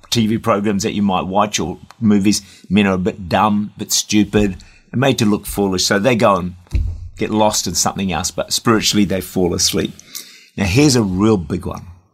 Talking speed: 205 wpm